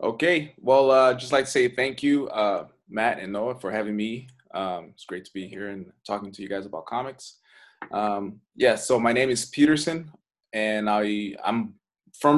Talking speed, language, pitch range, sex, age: 200 wpm, English, 105-130 Hz, male, 20-39